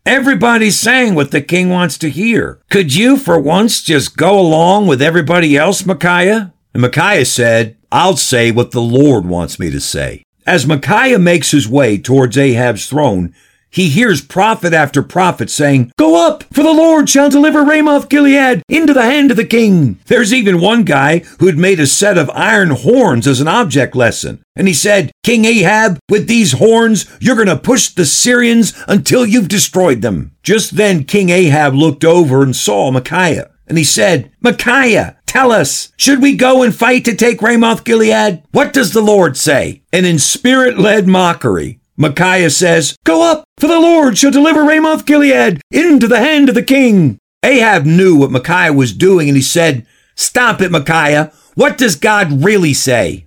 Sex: male